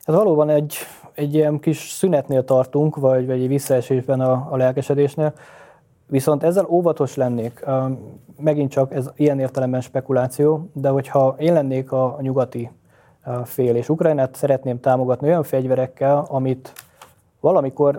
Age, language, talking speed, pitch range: 20-39, Hungarian, 130 wpm, 125-140 Hz